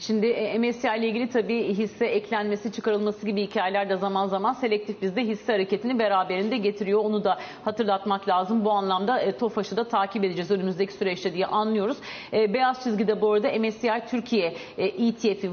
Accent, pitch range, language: native, 200-235 Hz, Turkish